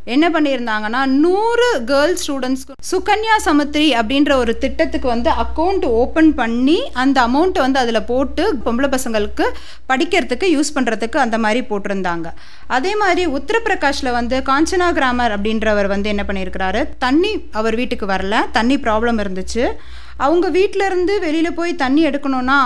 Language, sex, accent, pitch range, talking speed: Tamil, female, native, 230-320 Hz, 130 wpm